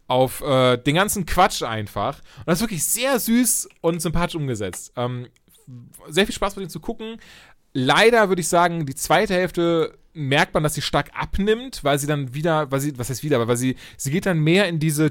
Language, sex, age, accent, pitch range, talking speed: German, male, 30-49, German, 130-180 Hz, 205 wpm